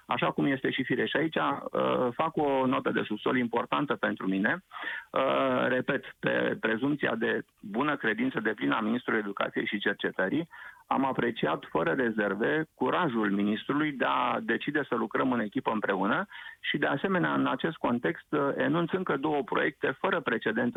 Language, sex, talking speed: Romanian, male, 155 wpm